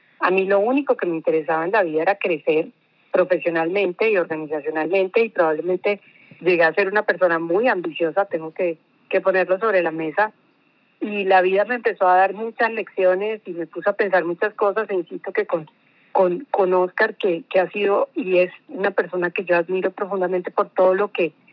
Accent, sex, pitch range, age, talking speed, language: Colombian, female, 180-220 Hz, 30-49, 195 wpm, Spanish